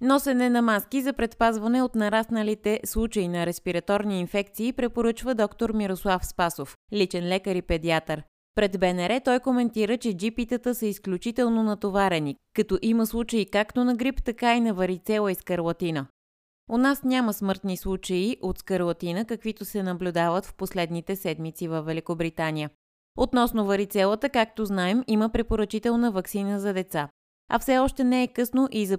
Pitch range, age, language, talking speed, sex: 175-230 Hz, 20-39, Bulgarian, 150 wpm, female